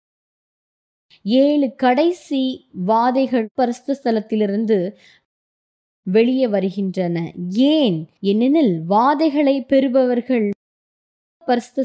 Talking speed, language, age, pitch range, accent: 60 wpm, Tamil, 20-39, 200-270 Hz, native